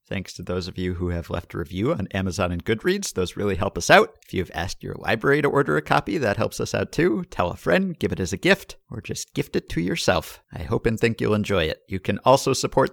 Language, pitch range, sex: English, 95-120 Hz, male